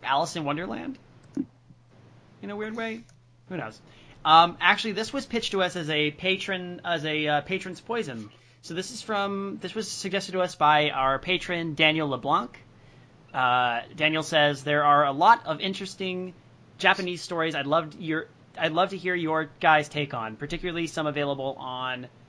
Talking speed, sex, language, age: 170 wpm, male, English, 30-49